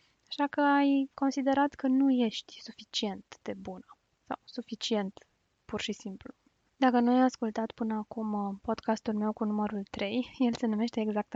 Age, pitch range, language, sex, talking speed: 20-39, 215-250 Hz, Romanian, female, 160 wpm